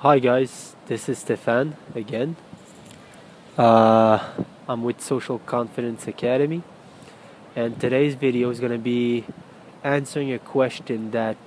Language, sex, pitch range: English, male, 120-140 Hz